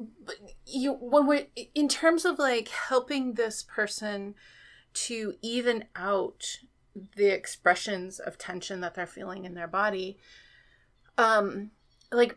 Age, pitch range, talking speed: 30-49, 190-245 Hz, 120 wpm